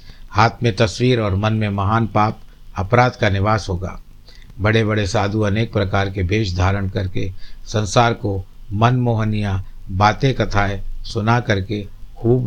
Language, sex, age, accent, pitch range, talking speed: Hindi, male, 60-79, native, 100-115 Hz, 140 wpm